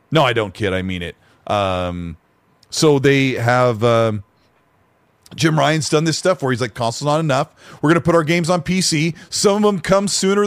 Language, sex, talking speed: English, male, 205 wpm